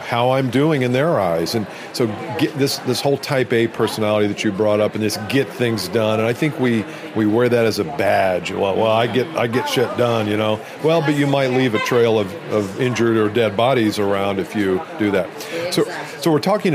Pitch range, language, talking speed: 105-125 Hz, English, 235 wpm